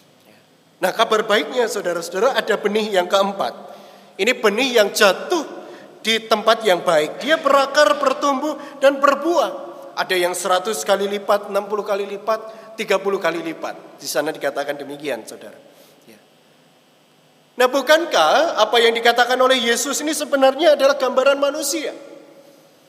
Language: Indonesian